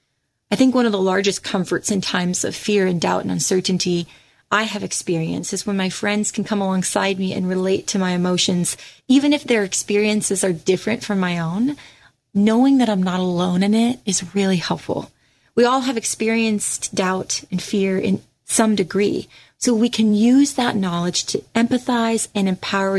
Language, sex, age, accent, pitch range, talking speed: English, female, 30-49, American, 180-220 Hz, 185 wpm